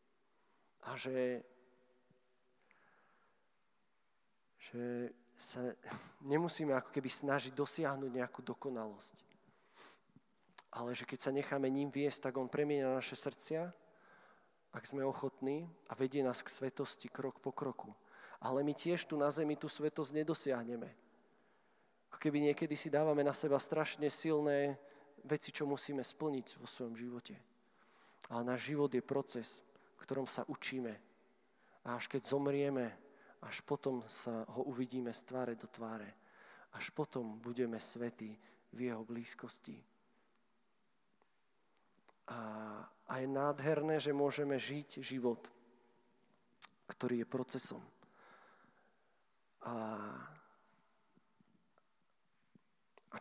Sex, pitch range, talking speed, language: male, 120-145 Hz, 115 wpm, Czech